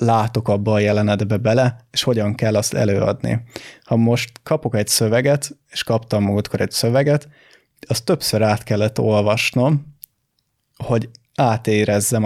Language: Hungarian